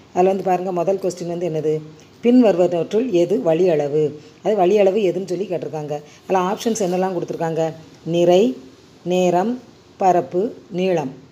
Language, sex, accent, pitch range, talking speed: Tamil, female, native, 160-195 Hz, 135 wpm